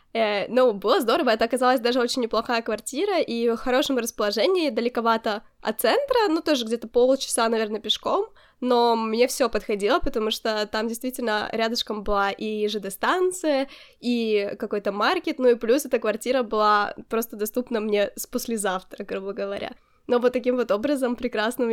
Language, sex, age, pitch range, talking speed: Ukrainian, female, 10-29, 210-255 Hz, 155 wpm